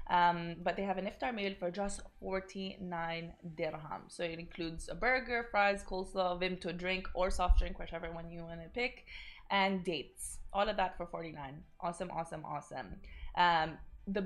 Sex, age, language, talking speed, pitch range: female, 20-39, Arabic, 175 wpm, 165-195 Hz